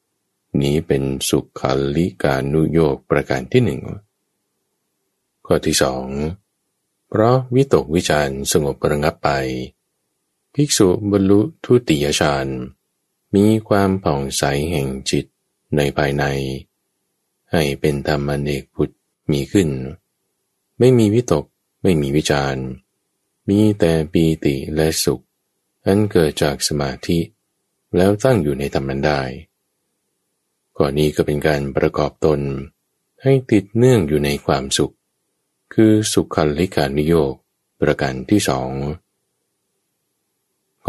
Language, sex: Thai, male